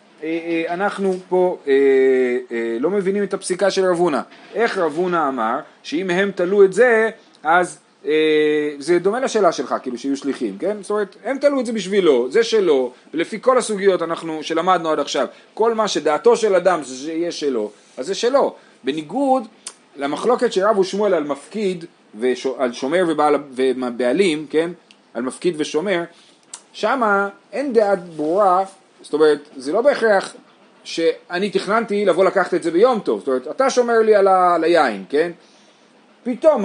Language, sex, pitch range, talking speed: Hebrew, male, 155-225 Hz, 150 wpm